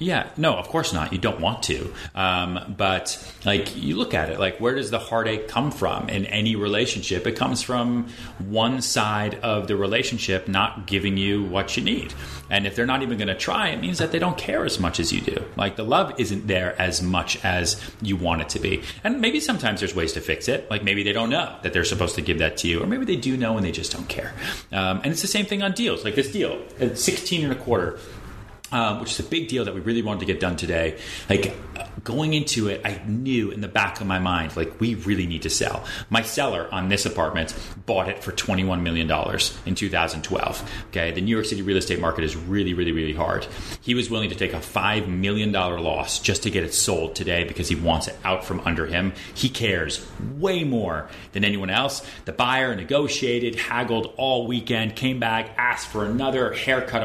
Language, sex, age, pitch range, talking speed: English, male, 30-49, 90-115 Hz, 230 wpm